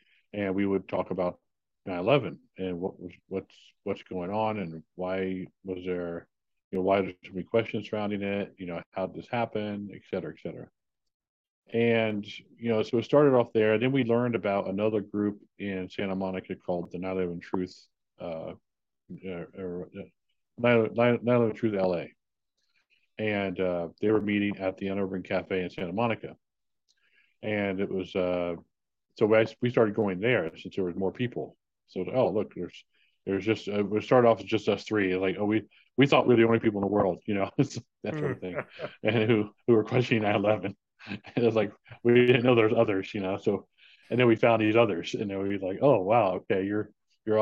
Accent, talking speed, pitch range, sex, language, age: American, 195 wpm, 95-110 Hz, male, English, 40-59